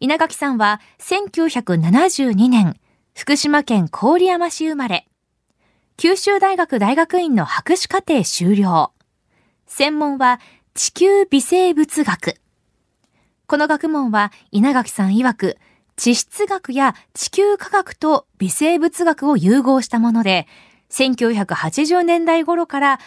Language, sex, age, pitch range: Japanese, female, 20-39, 225-325 Hz